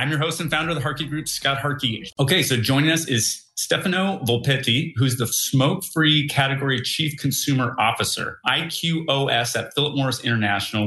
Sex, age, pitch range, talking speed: male, 30-49, 115-140 Hz, 165 wpm